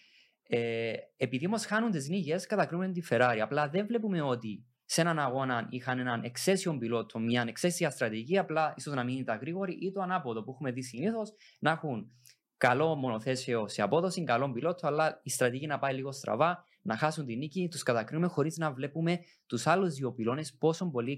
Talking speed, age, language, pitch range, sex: 190 wpm, 20-39, Greek, 125-175 Hz, male